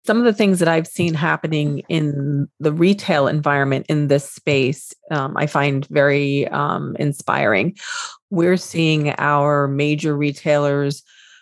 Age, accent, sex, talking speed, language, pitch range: 40-59, American, female, 135 wpm, English, 140-160 Hz